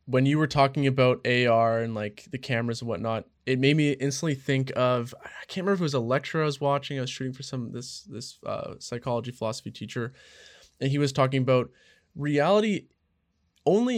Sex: male